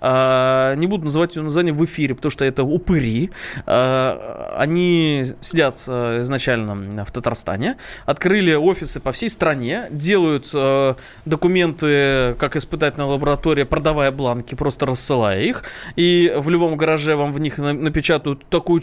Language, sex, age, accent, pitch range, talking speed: Russian, male, 20-39, native, 130-165 Hz, 130 wpm